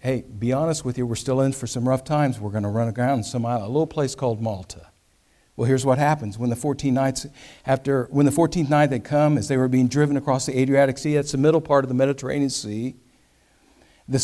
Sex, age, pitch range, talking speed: male, 50-69, 120-150 Hz, 245 wpm